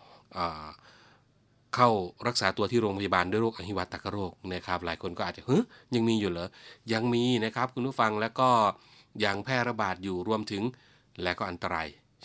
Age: 30-49